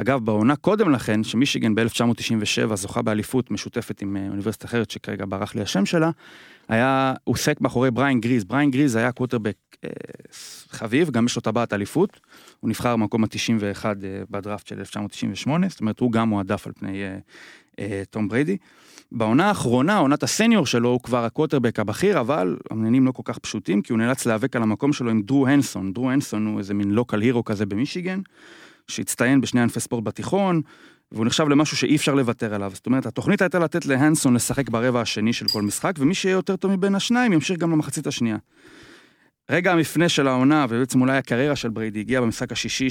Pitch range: 110-140 Hz